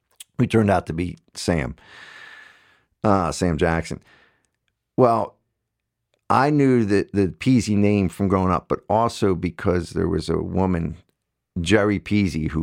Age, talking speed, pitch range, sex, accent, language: 50-69, 140 wpm, 80-100 Hz, male, American, English